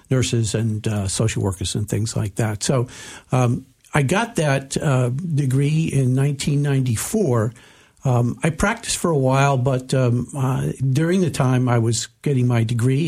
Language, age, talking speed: English, 60-79, 160 wpm